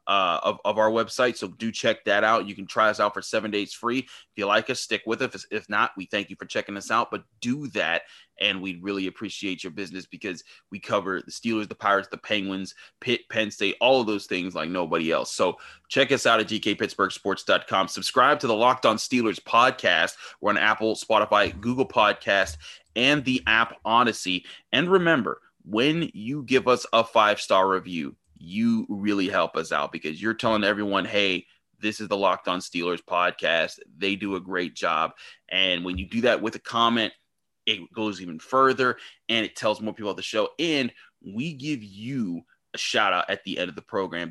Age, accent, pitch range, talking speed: 30-49, American, 100-125 Hz, 205 wpm